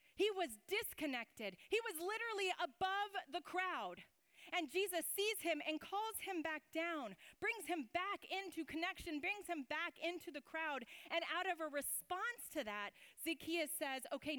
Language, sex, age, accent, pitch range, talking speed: English, female, 30-49, American, 255-345 Hz, 165 wpm